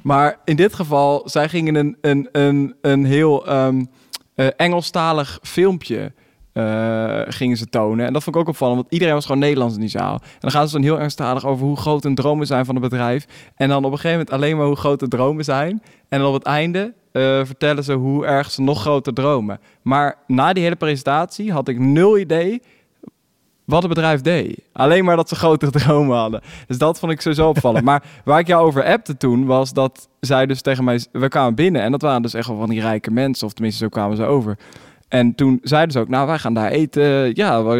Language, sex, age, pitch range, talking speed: Dutch, male, 20-39, 125-150 Hz, 235 wpm